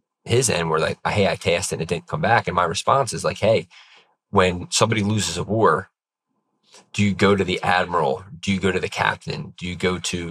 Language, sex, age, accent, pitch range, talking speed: English, male, 20-39, American, 90-105 Hz, 235 wpm